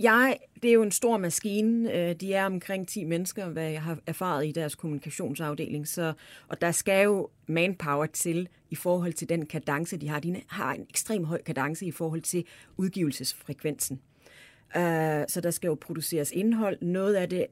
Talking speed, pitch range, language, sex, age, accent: 180 wpm, 155-195 Hz, Danish, female, 30-49, native